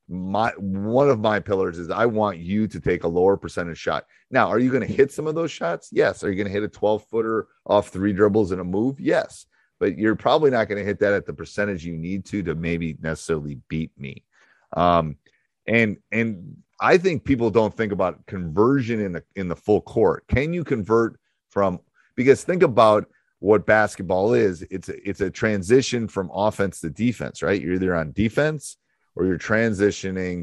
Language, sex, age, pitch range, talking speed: English, male, 30-49, 85-110 Hz, 205 wpm